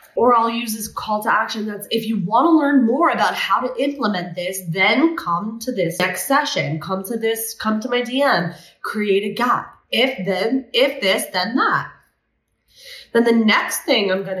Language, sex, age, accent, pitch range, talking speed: English, female, 20-39, American, 195-265 Hz, 195 wpm